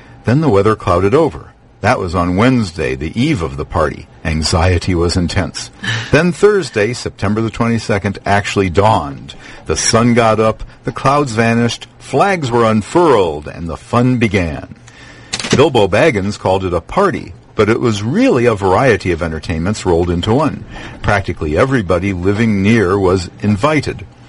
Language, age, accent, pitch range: English, 50-69, American, 95-125 Hz